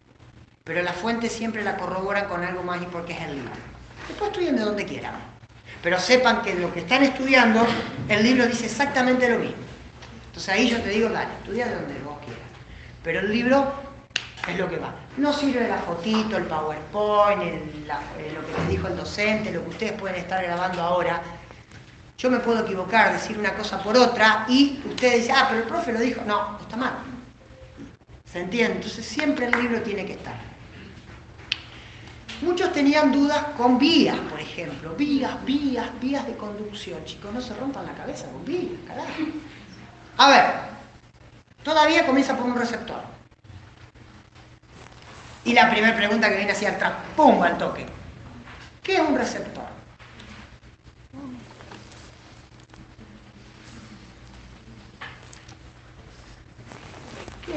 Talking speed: 155 wpm